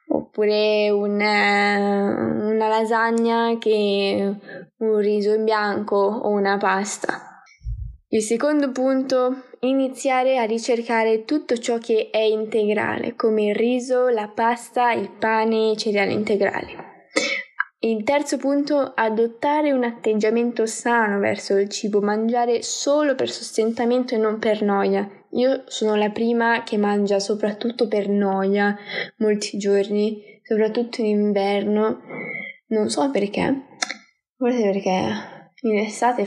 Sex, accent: female, native